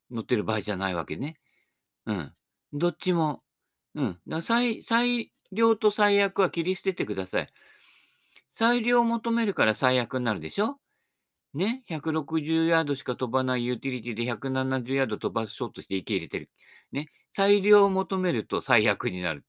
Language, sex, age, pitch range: Japanese, male, 50-69, 110-160 Hz